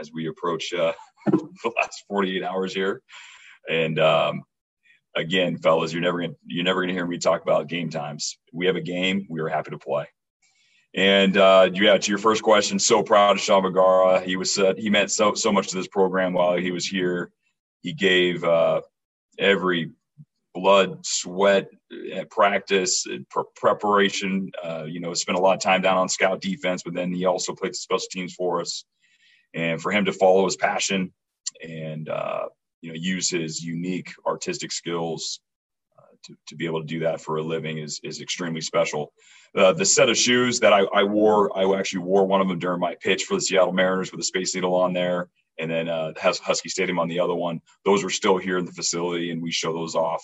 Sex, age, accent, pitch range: male, 40-59, American, 80-95 Hz